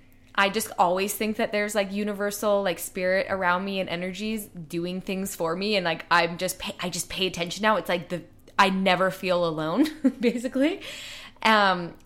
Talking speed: 180 wpm